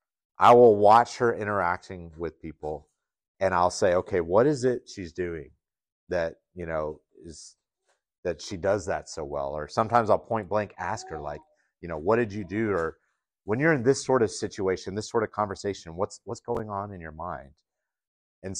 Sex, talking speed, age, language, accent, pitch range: male, 195 wpm, 30-49, English, American, 90-115 Hz